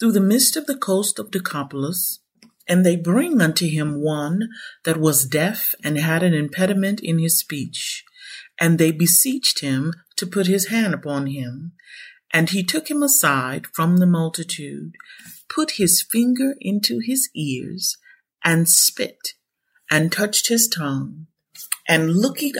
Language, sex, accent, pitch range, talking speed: English, female, American, 155-205 Hz, 150 wpm